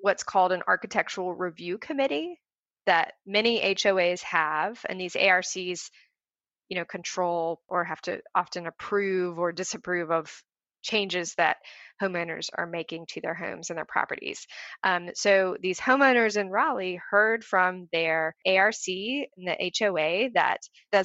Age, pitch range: 20-39, 175-205 Hz